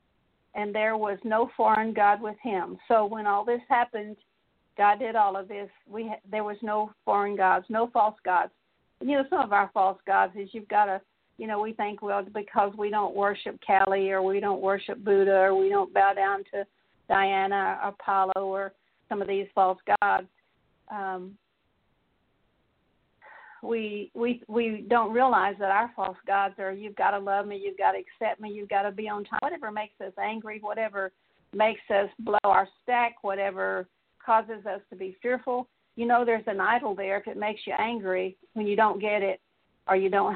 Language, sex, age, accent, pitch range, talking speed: English, female, 50-69, American, 195-220 Hz, 195 wpm